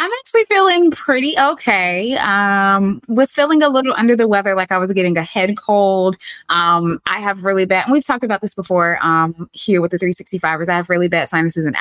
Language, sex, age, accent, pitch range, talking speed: English, female, 20-39, American, 170-240 Hz, 215 wpm